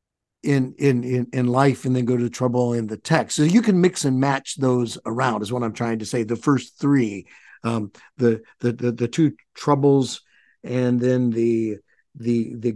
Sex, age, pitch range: male, 50-69, 120-150 Hz